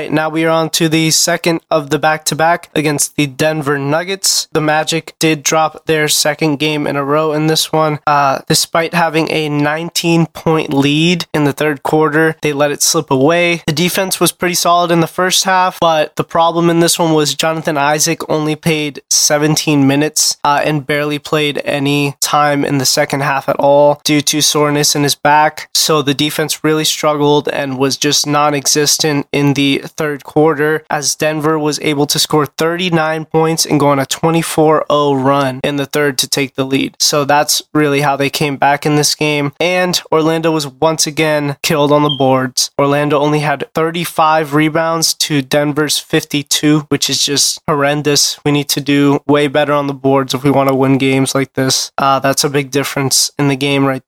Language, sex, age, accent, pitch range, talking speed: English, male, 20-39, American, 145-160 Hz, 190 wpm